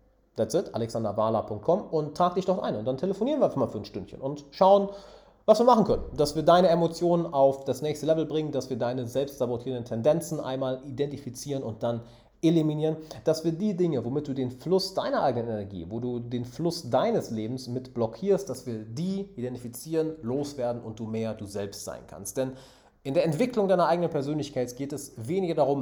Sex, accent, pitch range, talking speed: male, German, 115-160 Hz, 195 wpm